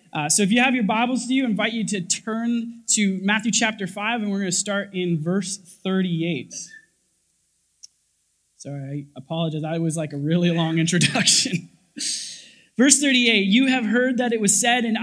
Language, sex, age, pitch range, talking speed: English, male, 20-39, 180-225 Hz, 185 wpm